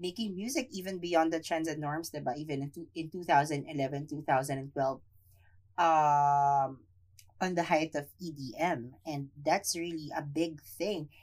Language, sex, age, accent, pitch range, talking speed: English, female, 20-39, Filipino, 150-200 Hz, 130 wpm